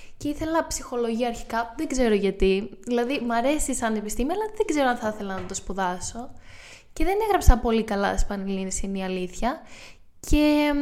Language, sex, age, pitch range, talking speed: Greek, female, 10-29, 200-270 Hz, 170 wpm